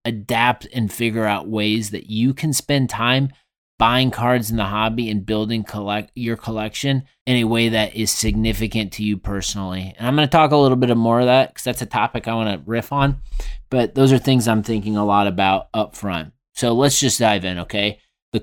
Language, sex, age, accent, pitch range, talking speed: English, male, 30-49, American, 110-130 Hz, 220 wpm